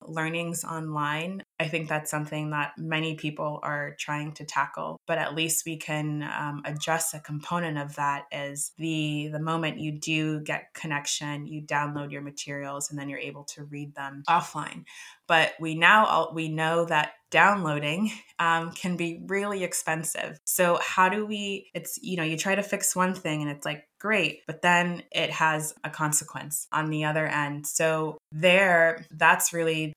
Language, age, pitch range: English, 20-39, 145-165 Hz